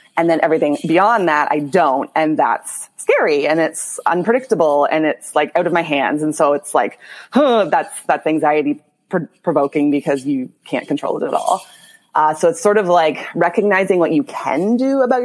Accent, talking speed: American, 190 wpm